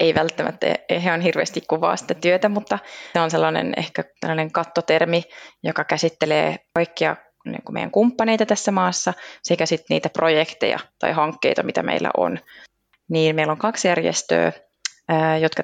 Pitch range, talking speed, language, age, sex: 155-180 Hz, 140 wpm, Finnish, 20-39, female